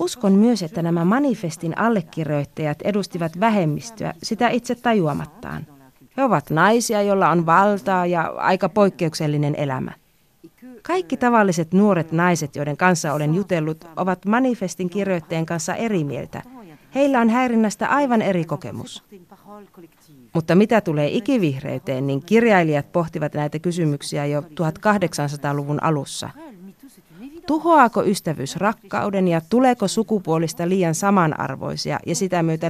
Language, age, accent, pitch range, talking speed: Finnish, 30-49, native, 155-210 Hz, 115 wpm